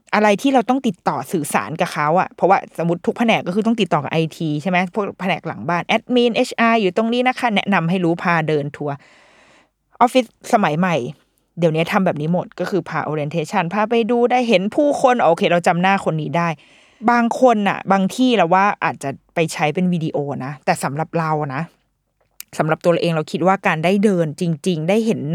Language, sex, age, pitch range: Thai, female, 20-39, 170-230 Hz